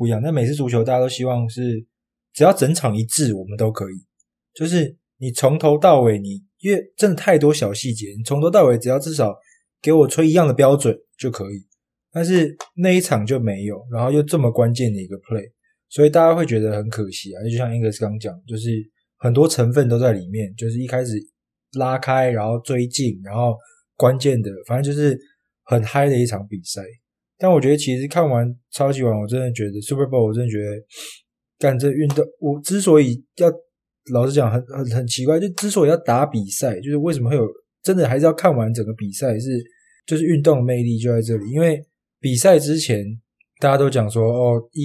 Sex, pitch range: male, 110-150 Hz